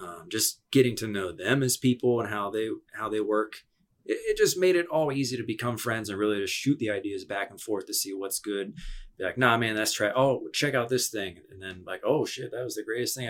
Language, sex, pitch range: English, male, 105-150 Hz